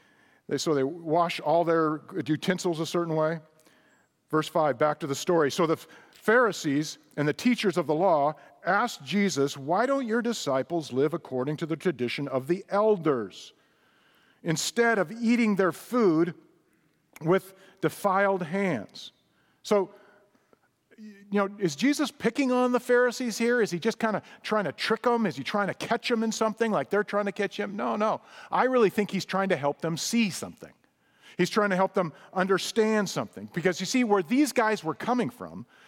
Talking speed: 180 wpm